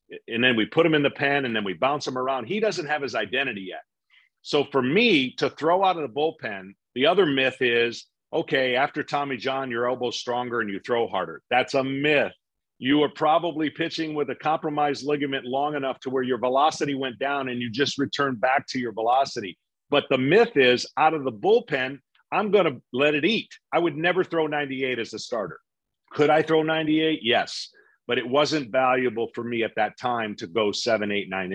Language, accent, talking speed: English, American, 215 wpm